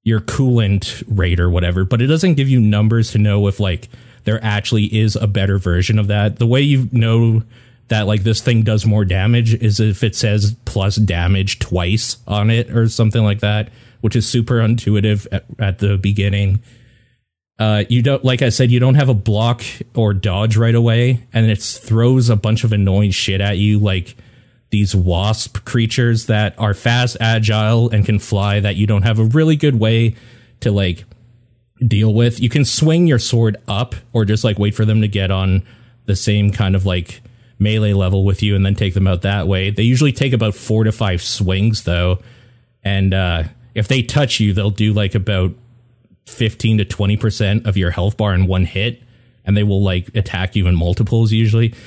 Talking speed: 200 wpm